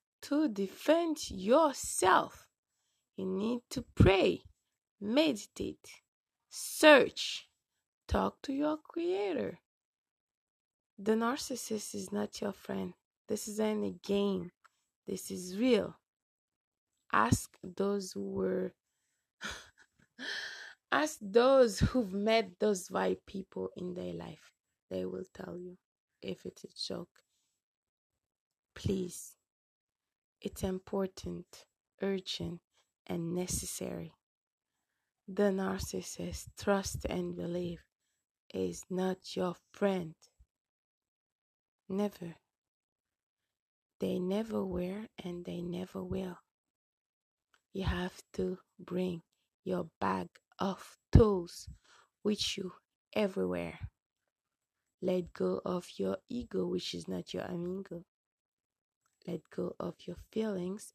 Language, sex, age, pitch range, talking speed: French, female, 20-39, 170-215 Hz, 95 wpm